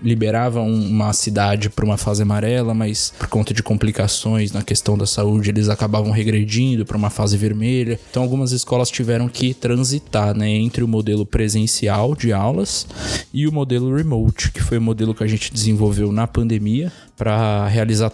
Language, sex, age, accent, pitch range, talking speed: Portuguese, male, 20-39, Brazilian, 105-125 Hz, 170 wpm